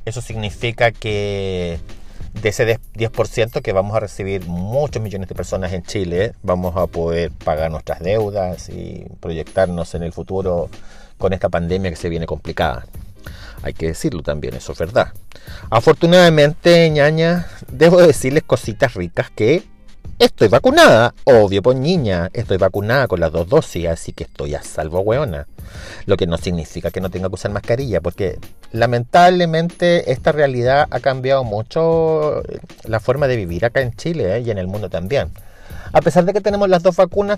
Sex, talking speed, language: male, 160 wpm, Spanish